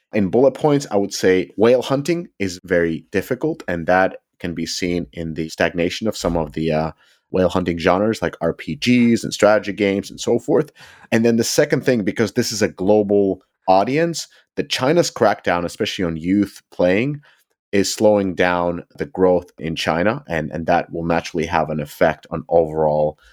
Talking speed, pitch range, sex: 180 wpm, 85-110 Hz, male